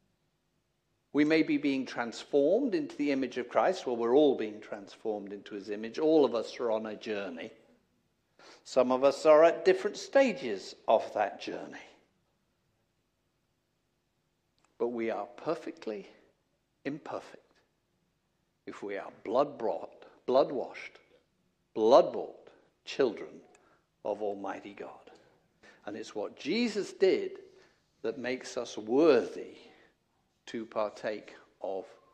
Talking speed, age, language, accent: 115 wpm, 60-79, English, British